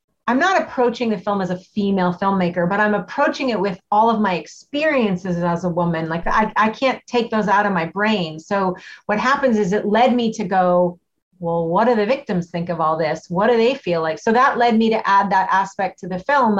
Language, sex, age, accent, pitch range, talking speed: English, female, 30-49, American, 180-210 Hz, 235 wpm